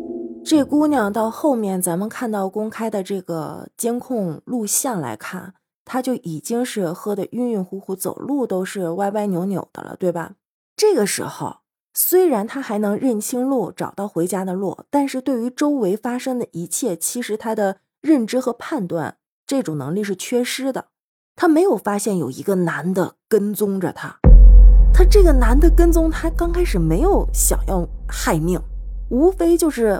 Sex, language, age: female, Chinese, 30-49